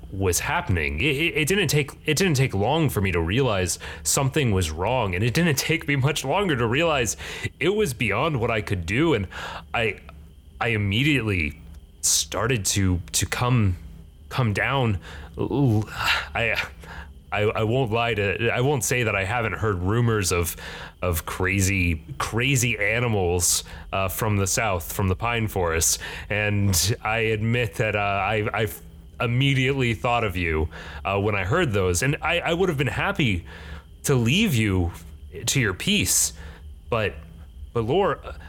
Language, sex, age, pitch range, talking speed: English, male, 30-49, 80-125 Hz, 160 wpm